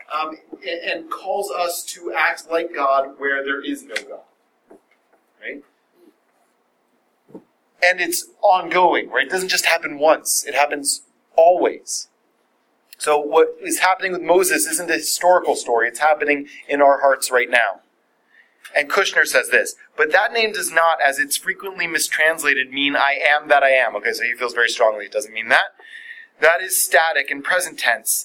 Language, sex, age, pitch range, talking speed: English, male, 30-49, 145-205 Hz, 165 wpm